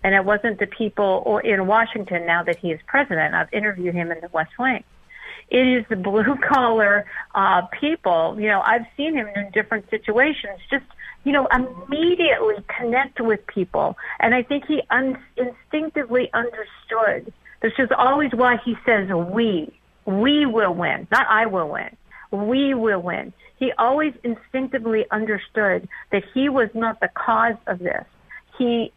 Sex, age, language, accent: female, 50-69, English, American